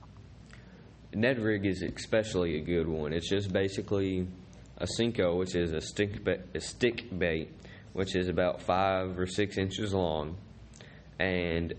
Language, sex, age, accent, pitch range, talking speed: English, male, 20-39, American, 90-105 Hz, 145 wpm